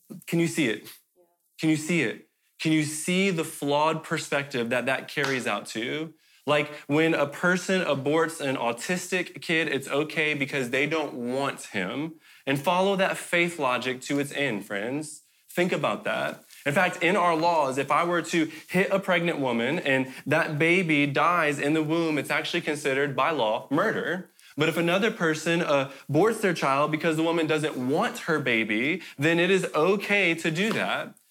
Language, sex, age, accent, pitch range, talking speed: English, male, 20-39, American, 150-180 Hz, 180 wpm